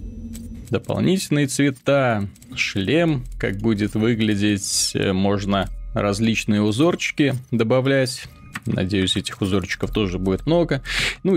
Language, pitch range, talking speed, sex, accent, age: Russian, 100-130 Hz, 90 wpm, male, native, 20-39